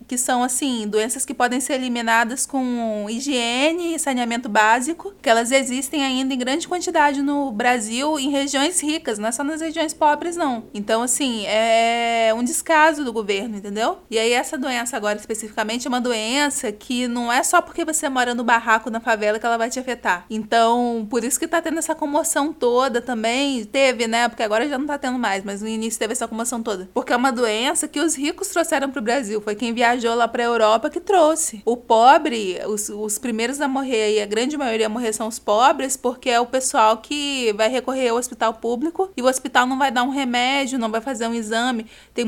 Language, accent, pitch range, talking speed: Portuguese, Brazilian, 225-280 Hz, 210 wpm